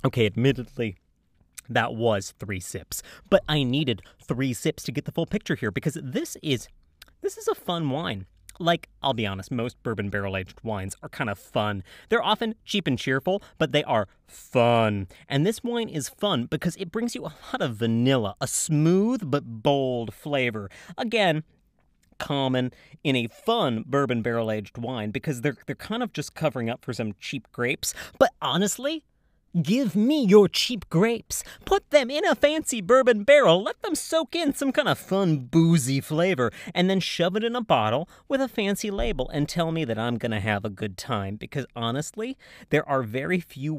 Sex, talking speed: male, 190 wpm